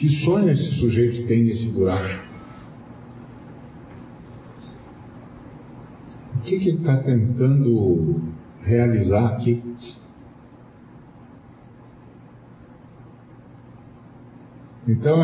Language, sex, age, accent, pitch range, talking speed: Portuguese, male, 50-69, Brazilian, 115-130 Hz, 65 wpm